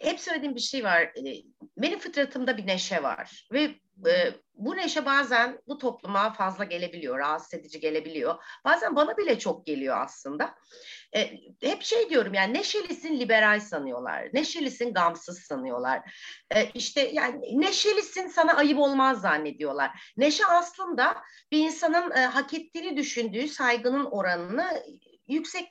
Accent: native